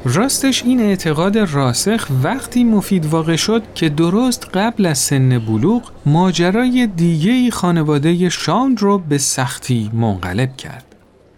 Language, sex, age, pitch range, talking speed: Persian, male, 40-59, 130-195 Hz, 120 wpm